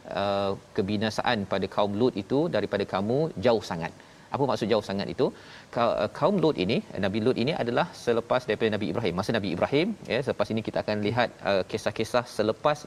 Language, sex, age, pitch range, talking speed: Malayalam, male, 40-59, 110-135 Hz, 170 wpm